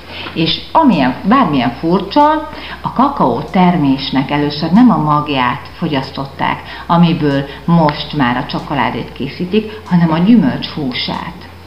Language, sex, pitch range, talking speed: Hungarian, female, 145-185 Hz, 110 wpm